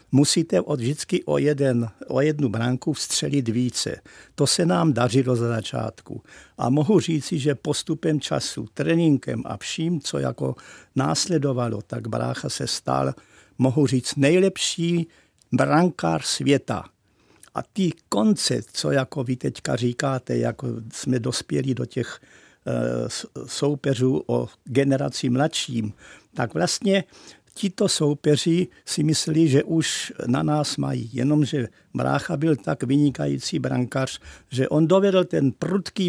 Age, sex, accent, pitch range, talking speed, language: 50-69, male, native, 130-160 Hz, 130 wpm, Czech